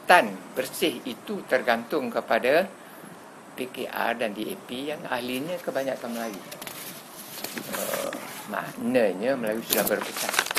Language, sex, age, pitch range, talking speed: Malay, male, 50-69, 105-145 Hz, 90 wpm